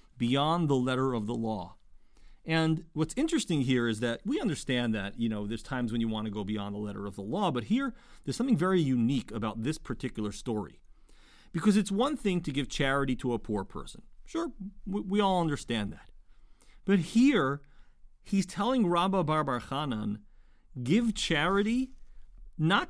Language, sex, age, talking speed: English, male, 40-59, 175 wpm